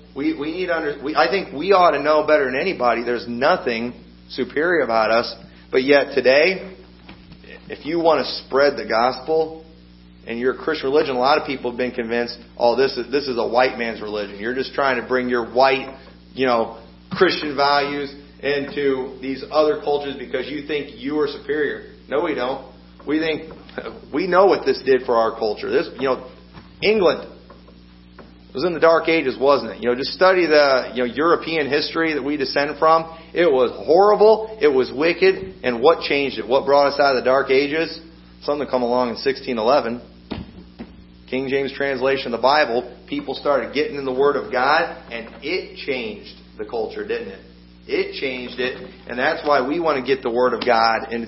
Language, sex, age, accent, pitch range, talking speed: English, male, 40-59, American, 115-150 Hz, 195 wpm